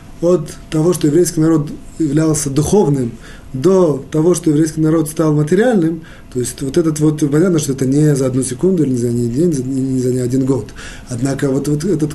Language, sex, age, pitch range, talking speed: Russian, male, 20-39, 125-160 Hz, 190 wpm